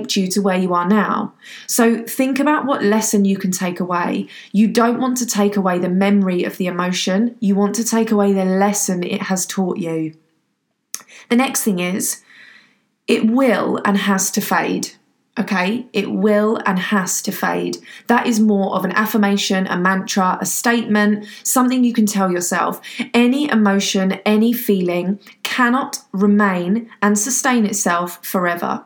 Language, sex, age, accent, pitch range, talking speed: English, female, 20-39, British, 190-225 Hz, 165 wpm